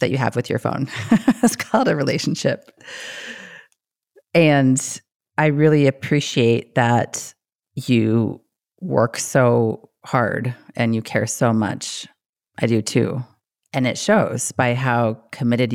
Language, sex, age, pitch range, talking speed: English, female, 30-49, 110-135 Hz, 125 wpm